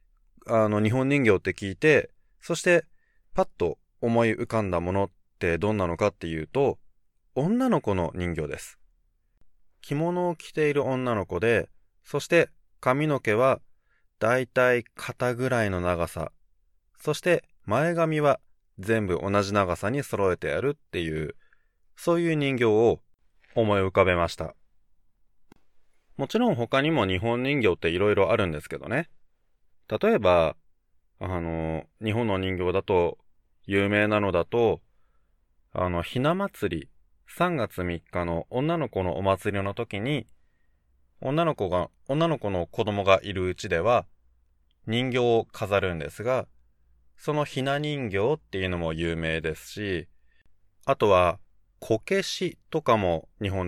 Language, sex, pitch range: Japanese, male, 85-130 Hz